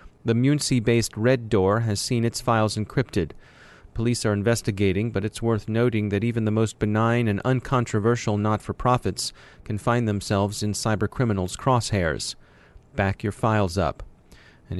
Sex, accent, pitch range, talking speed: male, American, 105-130 Hz, 145 wpm